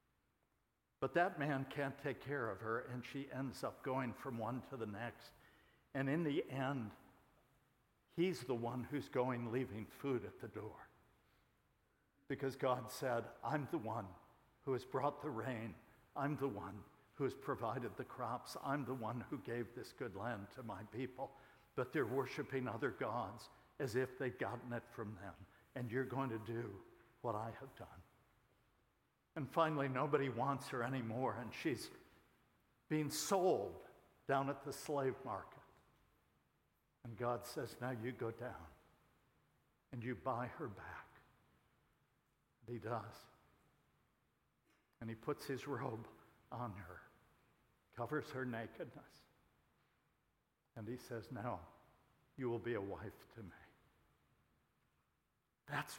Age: 60-79